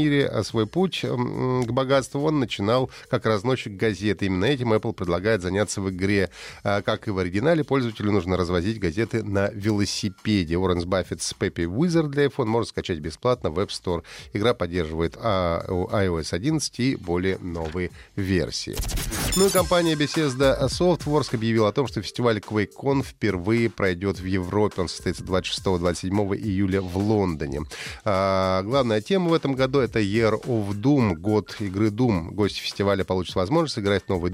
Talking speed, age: 155 wpm, 30-49